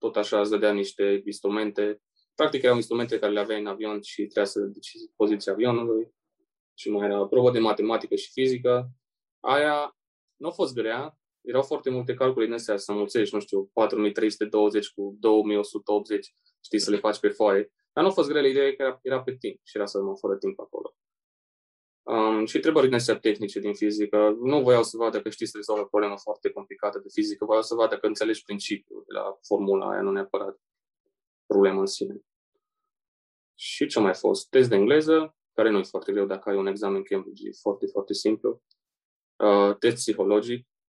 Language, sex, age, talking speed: Romanian, male, 20-39, 185 wpm